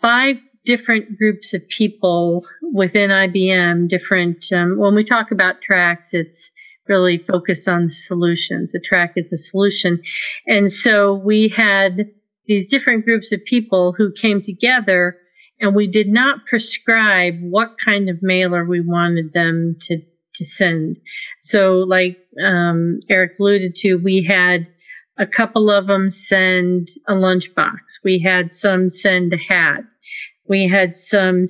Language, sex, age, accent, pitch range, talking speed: English, female, 40-59, American, 180-215 Hz, 145 wpm